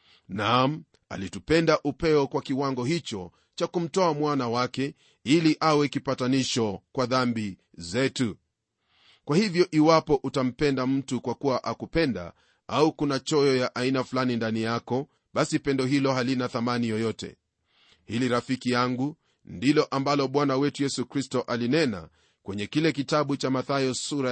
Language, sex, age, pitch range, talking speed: Swahili, male, 40-59, 115-140 Hz, 130 wpm